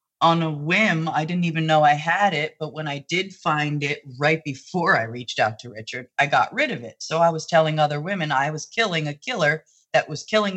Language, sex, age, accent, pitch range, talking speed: English, female, 30-49, American, 140-185 Hz, 240 wpm